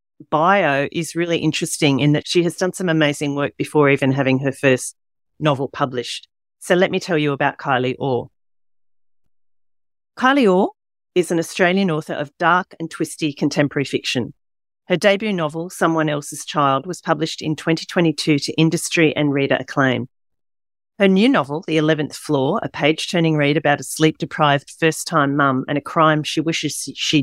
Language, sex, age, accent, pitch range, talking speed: English, female, 40-59, Australian, 140-180 Hz, 170 wpm